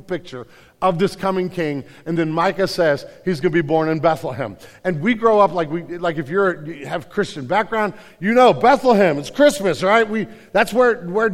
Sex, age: male, 50-69